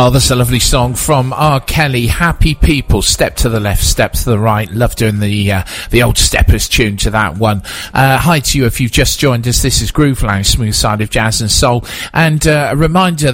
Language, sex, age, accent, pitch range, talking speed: English, male, 40-59, British, 110-140 Hz, 240 wpm